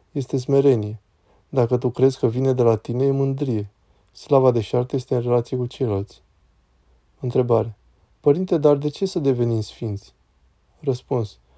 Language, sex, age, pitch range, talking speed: Romanian, male, 20-39, 105-140 Hz, 150 wpm